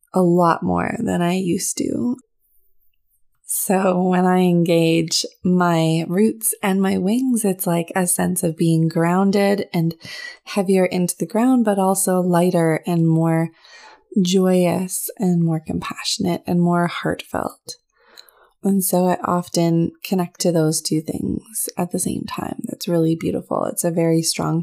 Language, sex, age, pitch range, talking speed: English, female, 20-39, 165-195 Hz, 145 wpm